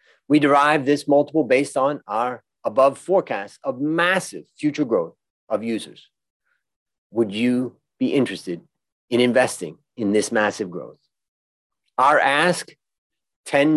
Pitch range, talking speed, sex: 120-160 Hz, 120 wpm, male